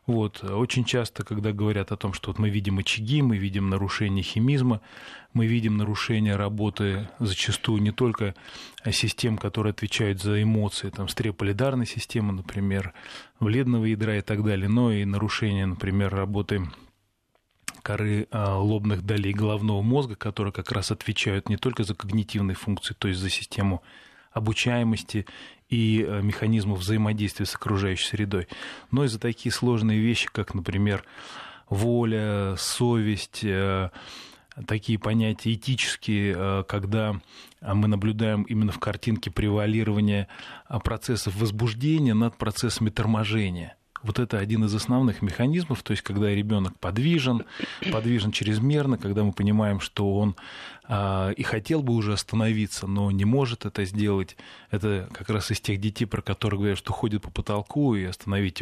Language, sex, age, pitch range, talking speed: Russian, male, 20-39, 100-115 Hz, 135 wpm